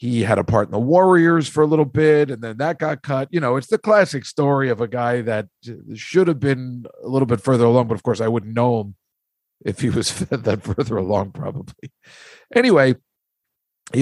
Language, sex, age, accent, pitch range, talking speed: English, male, 50-69, American, 115-145 Hz, 220 wpm